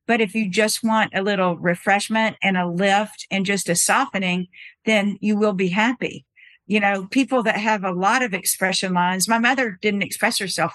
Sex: female